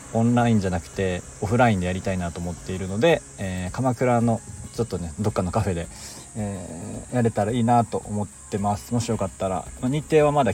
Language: Japanese